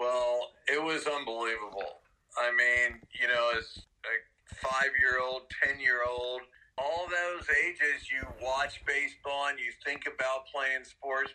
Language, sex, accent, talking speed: English, male, American, 150 wpm